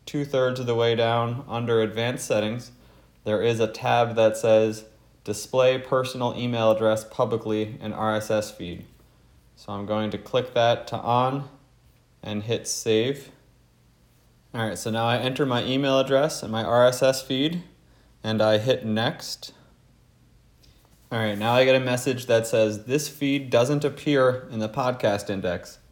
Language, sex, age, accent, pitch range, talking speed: English, male, 30-49, American, 105-125 Hz, 155 wpm